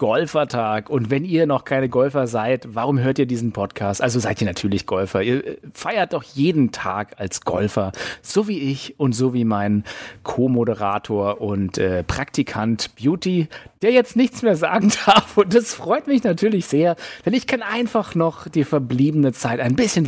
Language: German